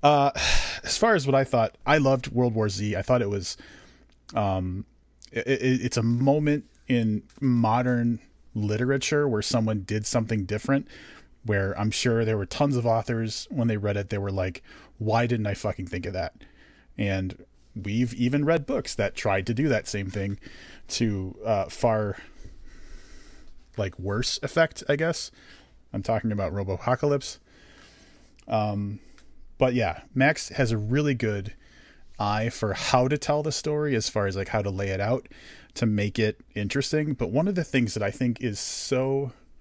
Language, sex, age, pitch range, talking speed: English, male, 30-49, 100-130 Hz, 175 wpm